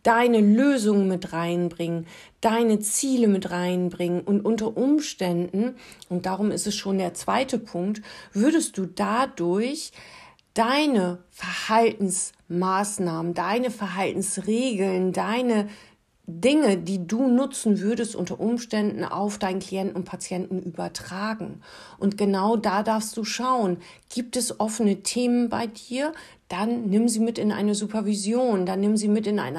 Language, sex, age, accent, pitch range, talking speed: German, female, 40-59, German, 185-230 Hz, 130 wpm